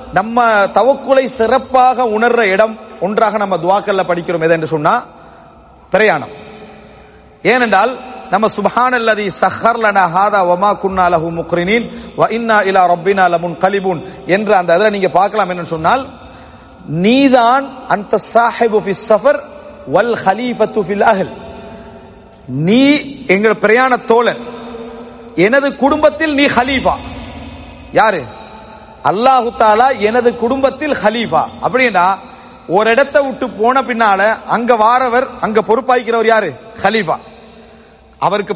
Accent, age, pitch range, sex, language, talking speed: Indian, 40-59, 190-250 Hz, male, English, 85 wpm